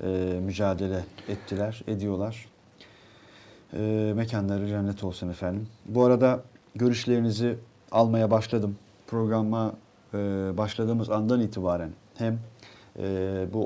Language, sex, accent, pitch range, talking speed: Turkish, male, native, 105-130 Hz, 95 wpm